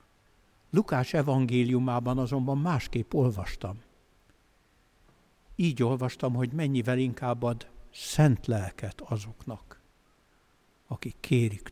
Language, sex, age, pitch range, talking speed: Hungarian, male, 60-79, 120-180 Hz, 80 wpm